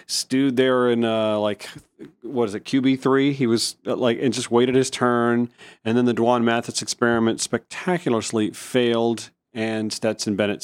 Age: 40-59